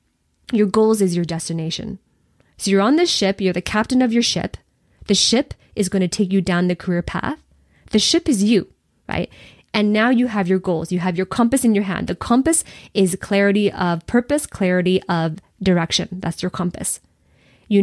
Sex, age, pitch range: female, 20-39, 175-215 Hz